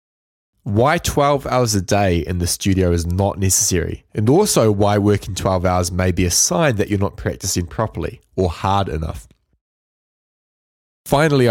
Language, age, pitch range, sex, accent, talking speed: English, 20-39, 90-110 Hz, male, Australian, 155 wpm